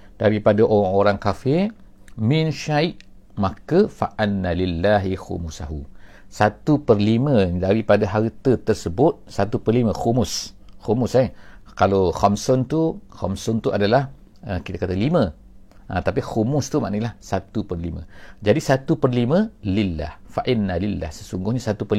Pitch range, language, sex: 95-120 Hz, English, male